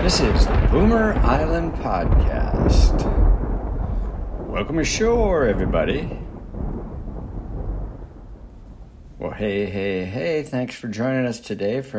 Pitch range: 95-135 Hz